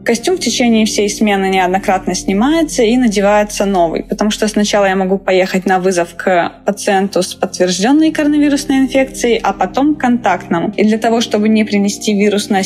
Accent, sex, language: native, female, Russian